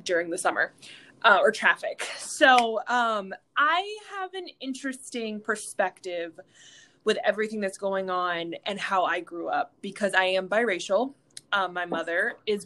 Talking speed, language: 145 wpm, English